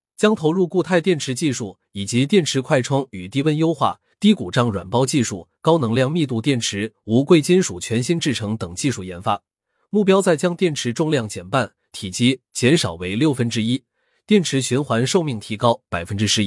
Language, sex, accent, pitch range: Chinese, male, native, 110-160 Hz